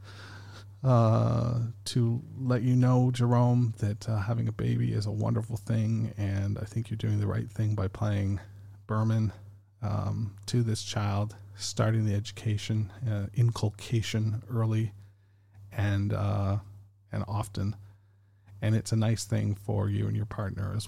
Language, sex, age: English, male, 40-59